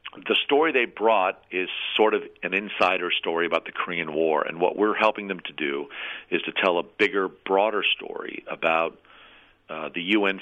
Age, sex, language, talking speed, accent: 50-69, male, English, 185 wpm, American